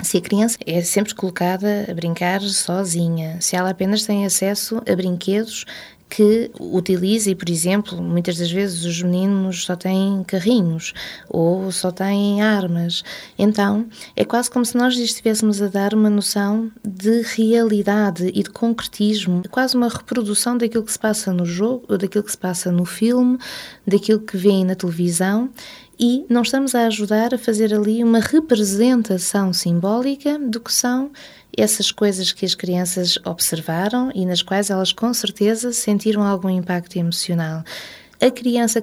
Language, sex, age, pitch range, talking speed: Portuguese, female, 20-39, 175-215 Hz, 160 wpm